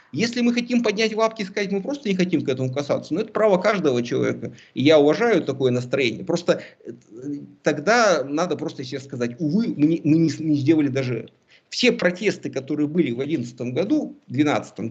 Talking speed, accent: 190 wpm, native